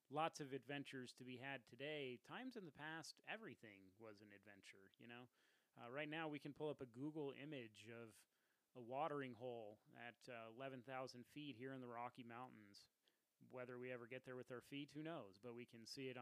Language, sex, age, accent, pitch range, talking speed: English, male, 30-49, American, 115-135 Hz, 205 wpm